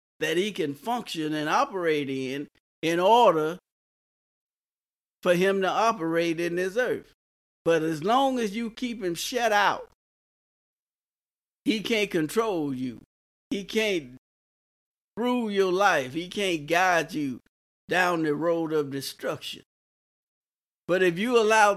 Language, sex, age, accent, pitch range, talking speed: English, male, 50-69, American, 145-200 Hz, 130 wpm